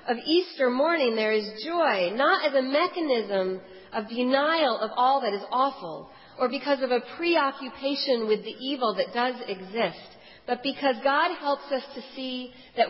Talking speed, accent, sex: 165 wpm, American, female